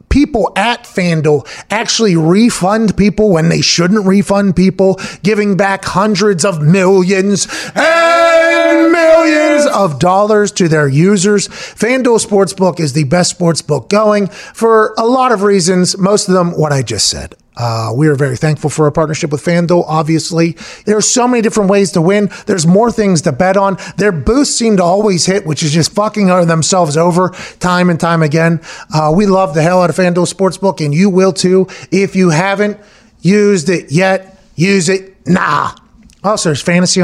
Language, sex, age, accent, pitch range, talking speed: English, male, 30-49, American, 165-200 Hz, 175 wpm